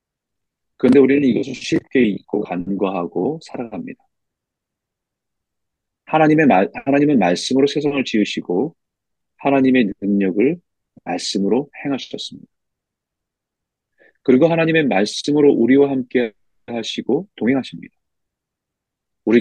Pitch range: 90-140 Hz